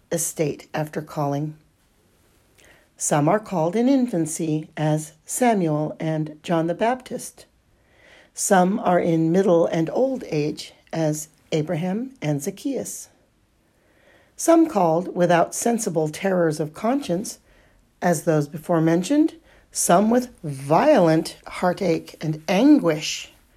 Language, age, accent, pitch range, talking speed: English, 50-69, American, 160-225 Hz, 105 wpm